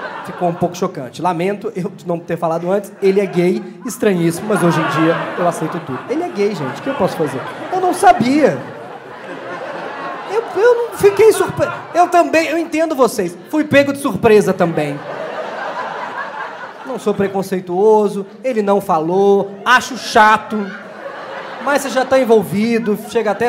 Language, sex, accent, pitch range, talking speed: Portuguese, male, Brazilian, 195-275 Hz, 160 wpm